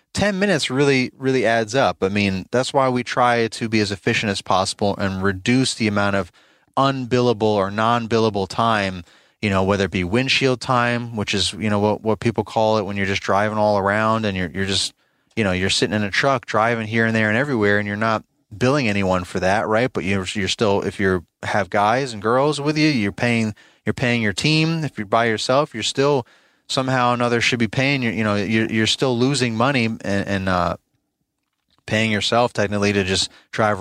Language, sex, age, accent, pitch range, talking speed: English, male, 30-49, American, 100-120 Hz, 215 wpm